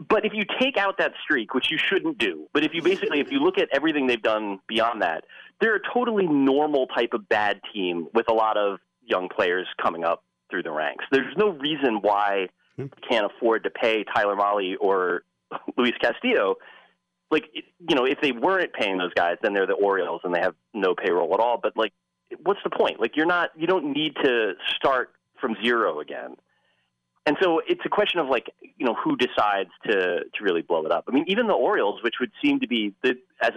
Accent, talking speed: American, 220 wpm